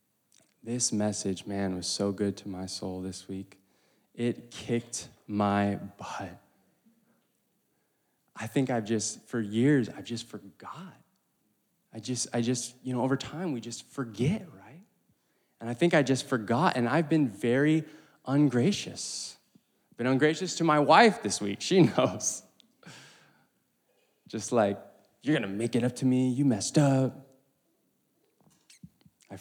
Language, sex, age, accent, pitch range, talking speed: English, male, 20-39, American, 105-145 Hz, 140 wpm